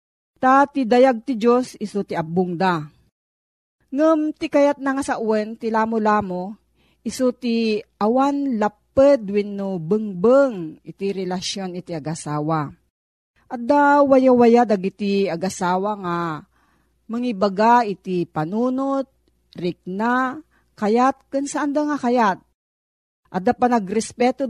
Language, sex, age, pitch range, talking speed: Filipino, female, 40-59, 180-245 Hz, 110 wpm